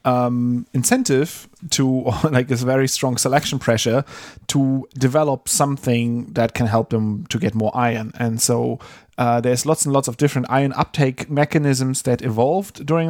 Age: 30-49